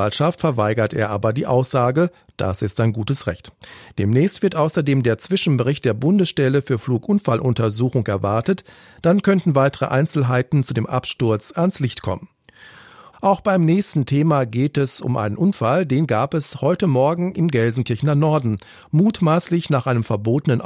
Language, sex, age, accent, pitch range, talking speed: German, male, 40-59, German, 115-160 Hz, 150 wpm